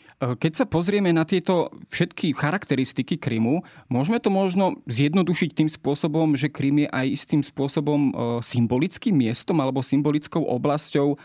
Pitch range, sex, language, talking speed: 135-155 Hz, male, Slovak, 135 wpm